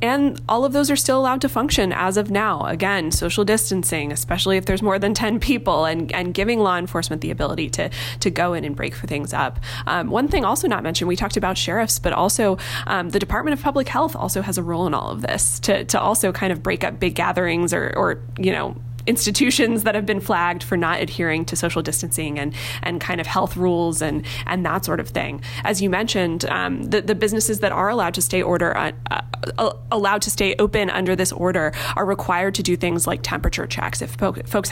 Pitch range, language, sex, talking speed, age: 160-205 Hz, English, female, 230 wpm, 20-39